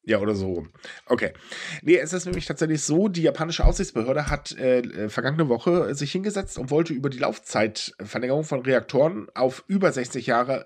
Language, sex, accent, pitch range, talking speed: German, male, German, 120-170 Hz, 170 wpm